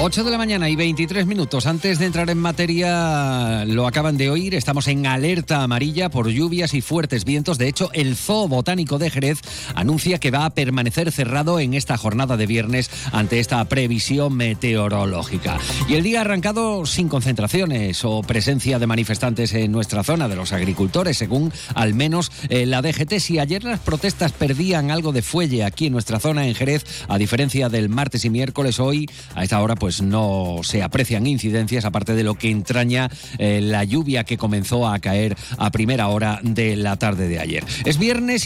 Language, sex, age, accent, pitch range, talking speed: Spanish, male, 40-59, Spanish, 115-160 Hz, 185 wpm